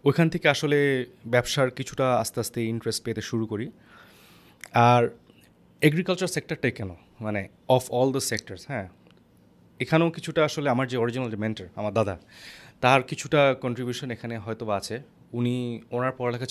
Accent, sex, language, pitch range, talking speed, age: native, male, Bengali, 110-130 Hz, 140 wpm, 30-49